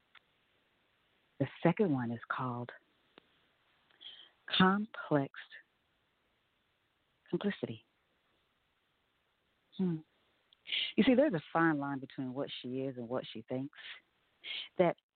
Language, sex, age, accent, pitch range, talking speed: English, female, 40-59, American, 130-180 Hz, 90 wpm